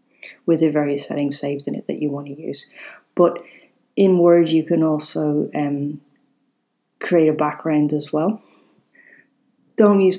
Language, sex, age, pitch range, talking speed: English, female, 30-49, 145-170 Hz, 155 wpm